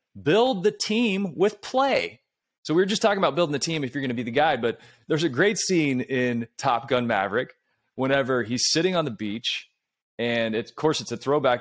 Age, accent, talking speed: 30-49, American, 220 wpm